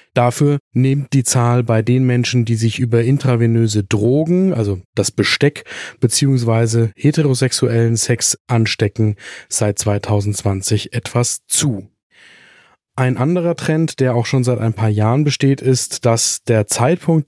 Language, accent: German, German